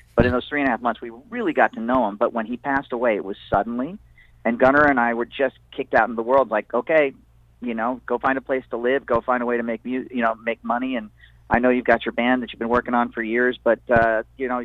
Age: 40-59